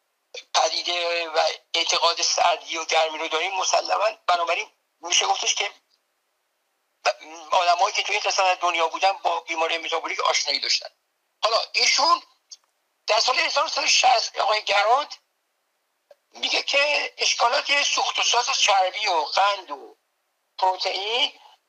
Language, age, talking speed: Persian, 60-79, 115 wpm